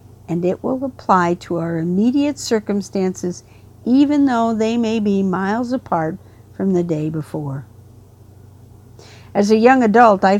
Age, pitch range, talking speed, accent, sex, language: 60-79, 160-225 Hz, 140 wpm, American, female, English